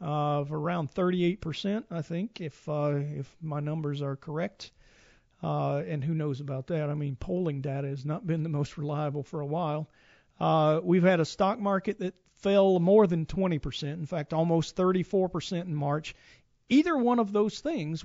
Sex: male